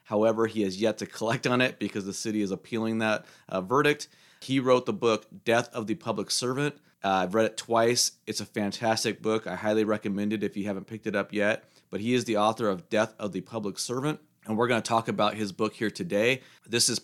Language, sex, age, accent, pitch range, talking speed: English, male, 30-49, American, 105-125 Hz, 240 wpm